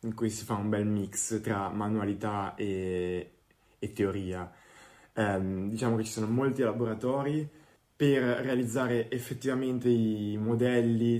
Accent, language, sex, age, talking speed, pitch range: native, Italian, male, 20-39, 130 wpm, 100-115 Hz